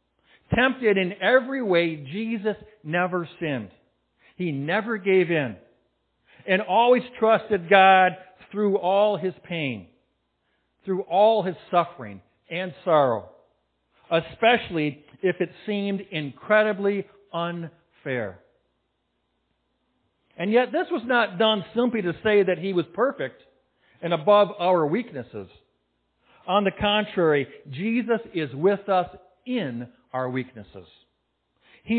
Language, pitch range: English, 130-210 Hz